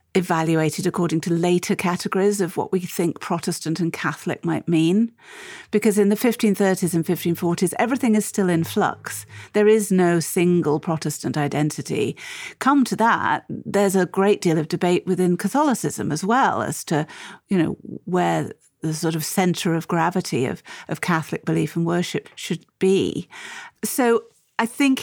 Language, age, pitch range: English, 50-69, 165-215 Hz